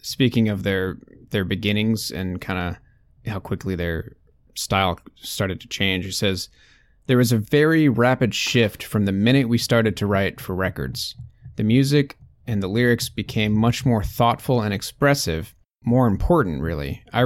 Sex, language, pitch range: male, English, 95-120 Hz